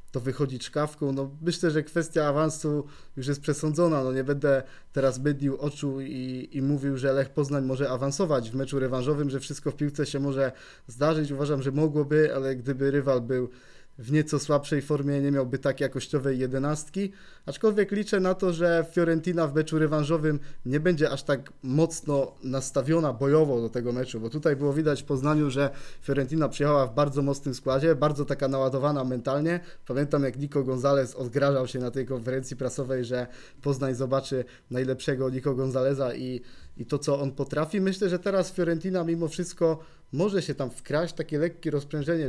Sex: male